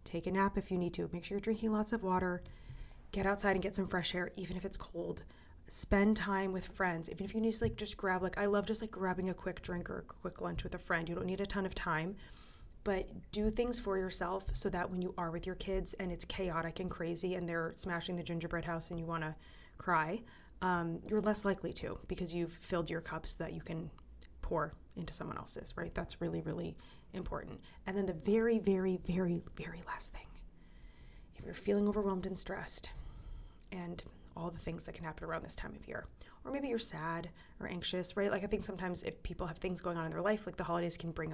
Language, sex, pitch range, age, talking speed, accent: English, female, 165-195 Hz, 20-39, 235 wpm, American